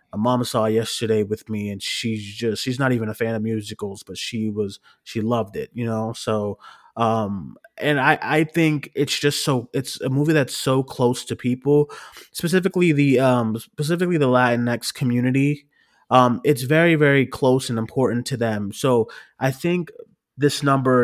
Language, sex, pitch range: English, male, 120-145 Hz